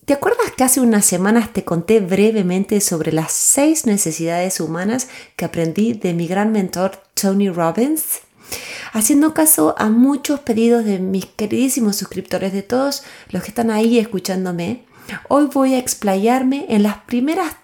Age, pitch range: 30-49, 185-270 Hz